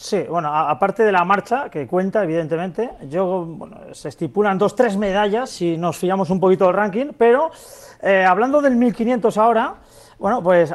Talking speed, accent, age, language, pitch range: 175 wpm, Spanish, 40-59, Spanish, 180-235 Hz